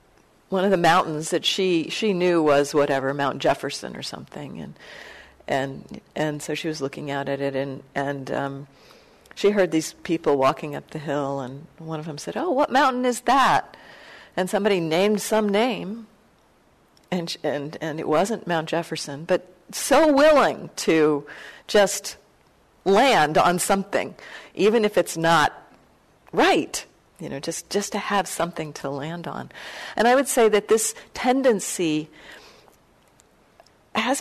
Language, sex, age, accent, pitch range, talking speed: English, female, 50-69, American, 150-210 Hz, 155 wpm